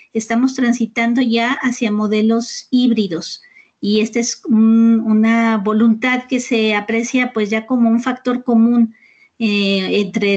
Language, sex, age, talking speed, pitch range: Spanish, female, 40-59, 125 wpm, 215-250 Hz